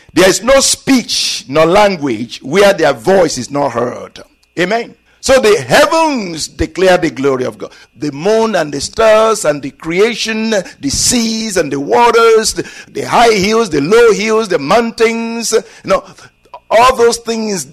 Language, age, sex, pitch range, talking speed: English, 60-79, male, 155-230 Hz, 155 wpm